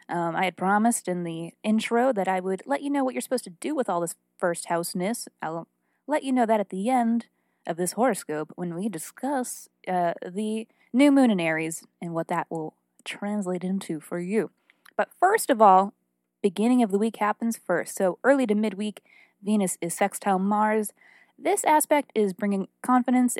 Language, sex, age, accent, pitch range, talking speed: English, female, 20-39, American, 175-230 Hz, 190 wpm